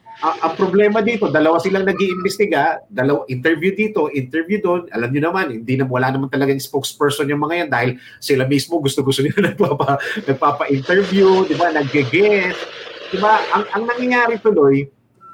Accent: Filipino